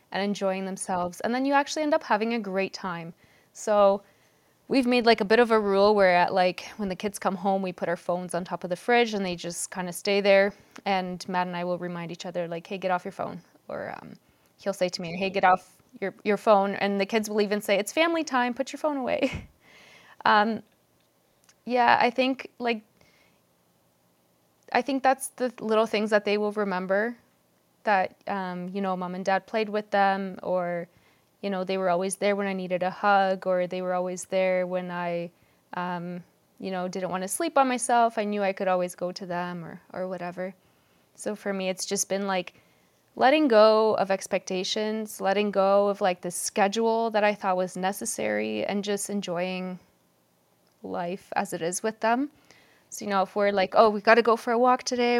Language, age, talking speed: English, 20-39, 210 wpm